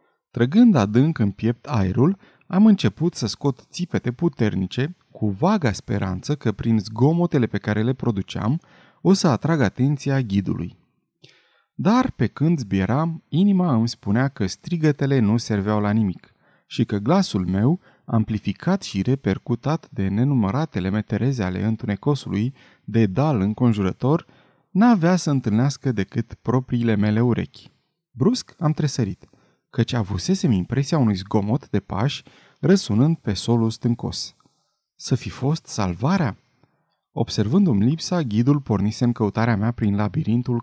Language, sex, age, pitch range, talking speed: Romanian, male, 30-49, 105-155 Hz, 130 wpm